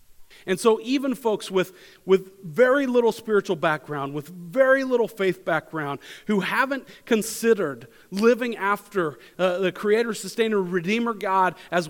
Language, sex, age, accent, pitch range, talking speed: English, male, 40-59, American, 160-215 Hz, 135 wpm